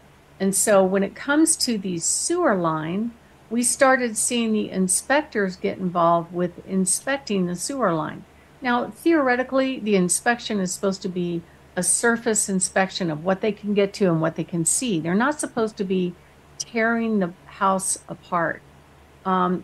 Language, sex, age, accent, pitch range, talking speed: English, female, 60-79, American, 170-225 Hz, 160 wpm